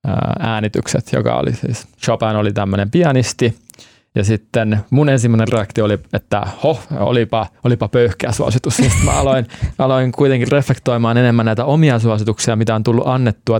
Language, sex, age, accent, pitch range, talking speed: Finnish, male, 20-39, native, 110-130 Hz, 150 wpm